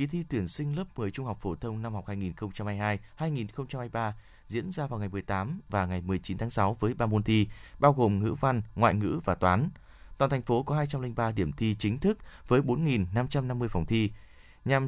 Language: Vietnamese